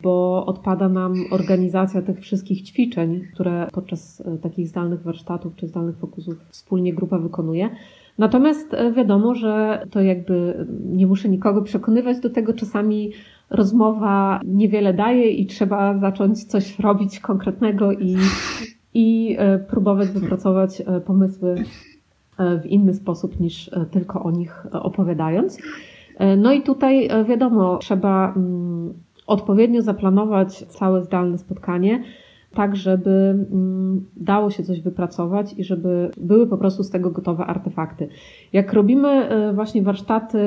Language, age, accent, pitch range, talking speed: Polish, 30-49, native, 185-220 Hz, 120 wpm